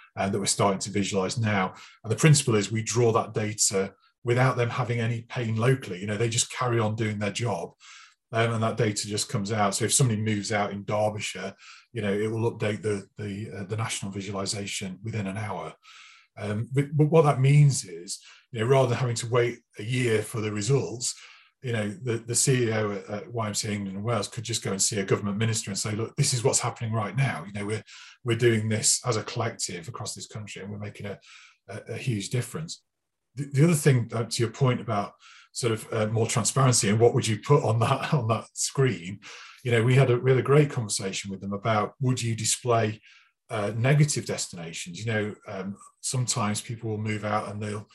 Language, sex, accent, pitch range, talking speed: English, male, British, 105-125 Hz, 215 wpm